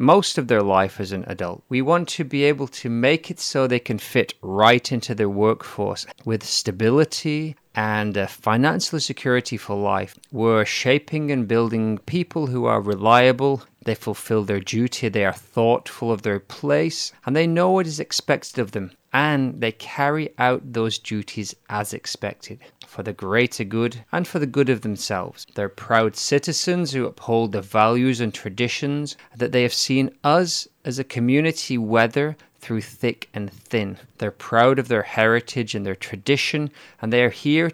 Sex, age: male, 30-49